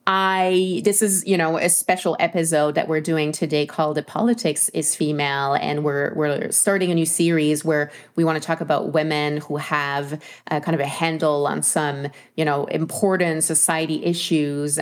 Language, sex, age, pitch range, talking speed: English, female, 30-49, 150-170 Hz, 180 wpm